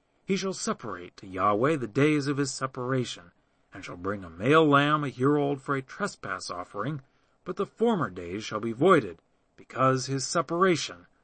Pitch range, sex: 105-150 Hz, male